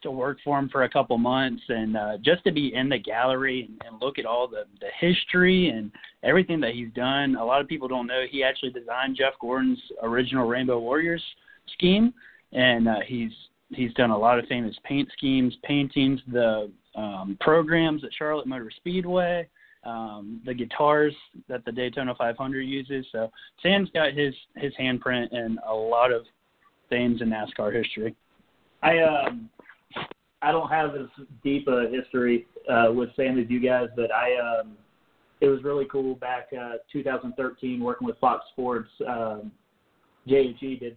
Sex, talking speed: male, 175 wpm